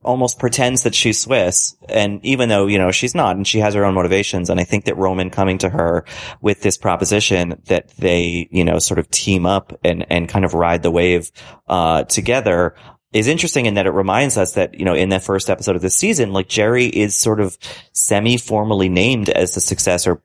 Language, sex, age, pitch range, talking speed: English, male, 30-49, 90-115 Hz, 220 wpm